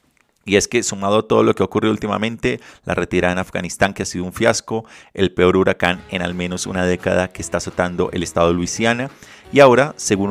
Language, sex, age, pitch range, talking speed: Spanish, male, 30-49, 90-115 Hz, 220 wpm